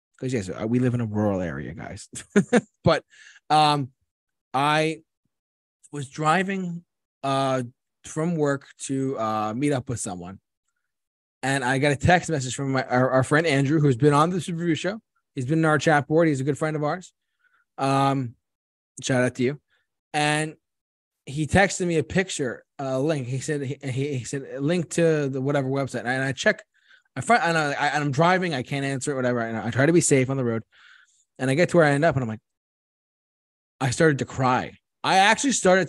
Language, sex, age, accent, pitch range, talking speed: English, male, 20-39, American, 125-155 Hz, 195 wpm